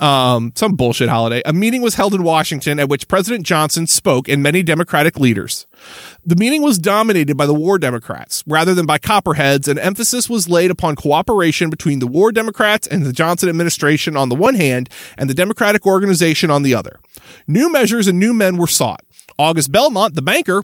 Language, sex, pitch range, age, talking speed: English, male, 155-225 Hz, 30-49, 195 wpm